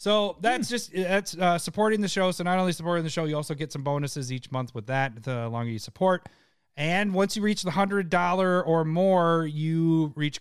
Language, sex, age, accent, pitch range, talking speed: English, male, 30-49, American, 130-175 Hz, 215 wpm